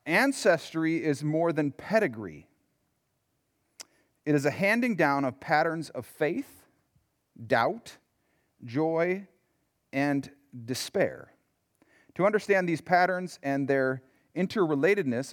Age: 40-59